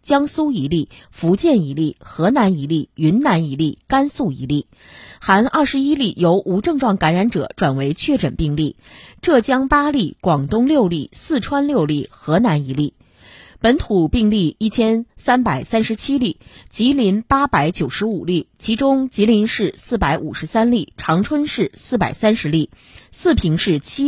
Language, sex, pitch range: Chinese, female, 160-260 Hz